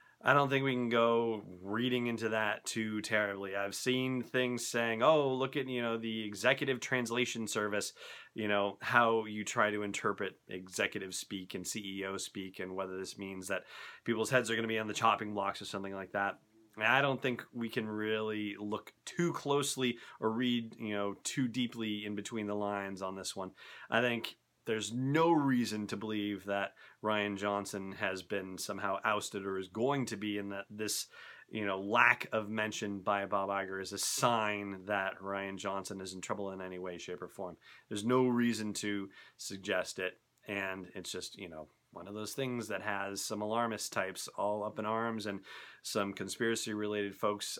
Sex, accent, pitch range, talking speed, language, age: male, American, 100-115 Hz, 190 wpm, English, 30-49